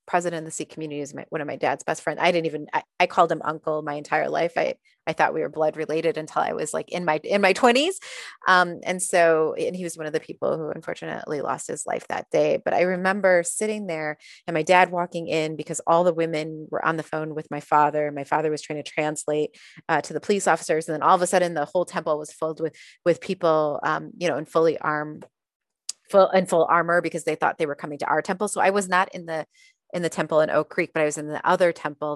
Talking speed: 265 wpm